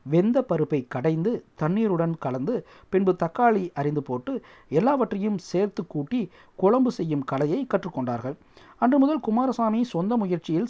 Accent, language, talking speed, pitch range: native, Tamil, 120 wpm, 150-225 Hz